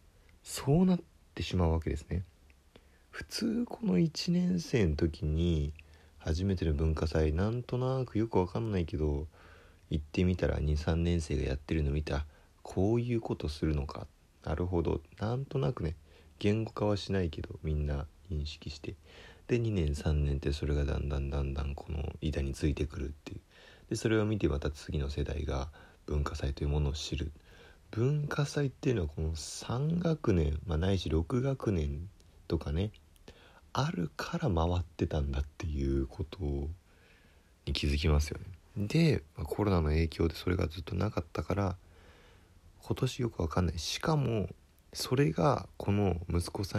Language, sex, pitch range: Japanese, male, 75-105 Hz